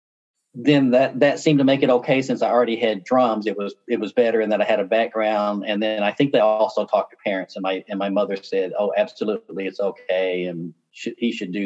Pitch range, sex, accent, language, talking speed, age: 105-145 Hz, male, American, English, 245 wpm, 40-59